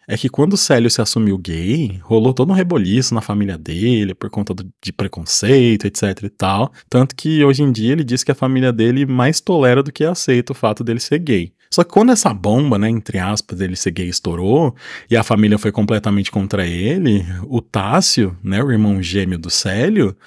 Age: 20-39